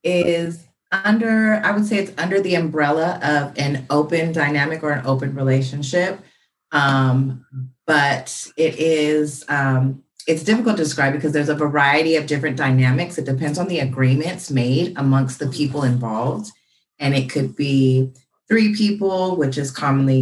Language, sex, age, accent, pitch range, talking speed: English, female, 30-49, American, 135-165 Hz, 155 wpm